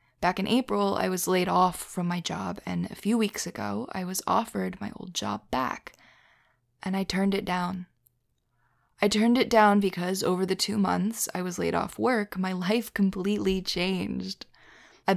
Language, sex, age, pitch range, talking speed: English, female, 20-39, 180-205 Hz, 180 wpm